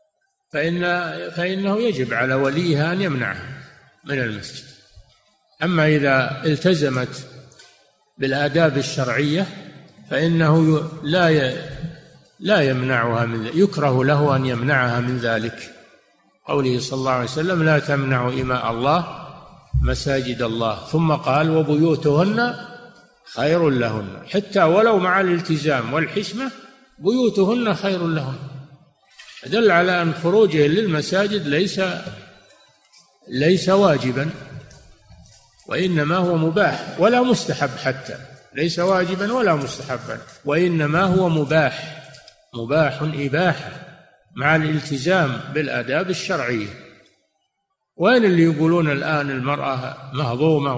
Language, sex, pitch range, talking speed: Arabic, male, 135-175 Hz, 100 wpm